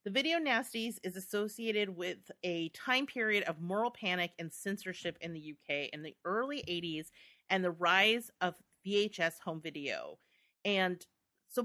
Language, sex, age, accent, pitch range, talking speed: English, female, 30-49, American, 165-220 Hz, 155 wpm